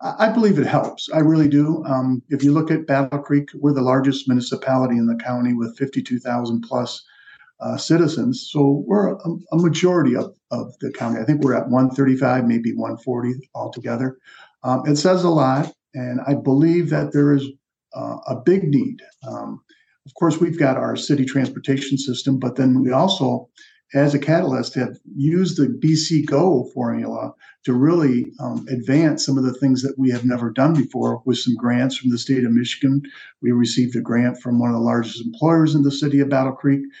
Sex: male